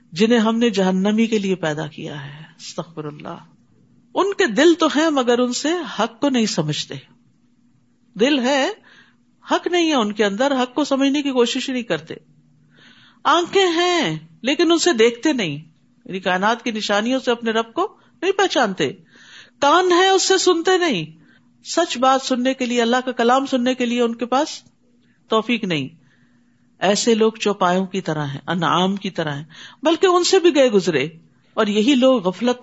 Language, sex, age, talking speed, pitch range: Urdu, female, 50-69, 175 wpm, 185-275 Hz